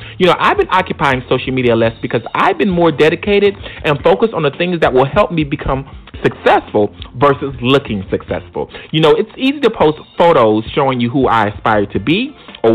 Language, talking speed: English, 200 wpm